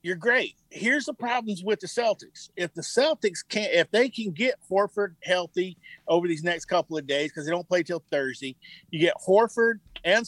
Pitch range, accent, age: 160-215 Hz, American, 50-69